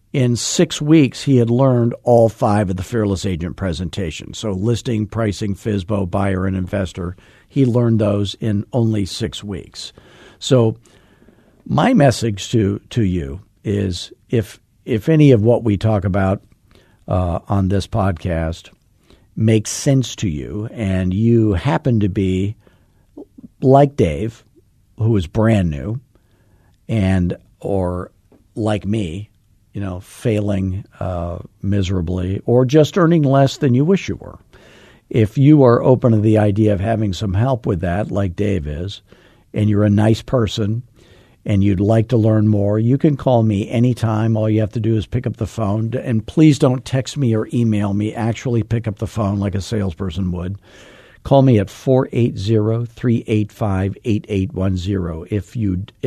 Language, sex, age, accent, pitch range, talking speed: English, male, 50-69, American, 100-120 Hz, 150 wpm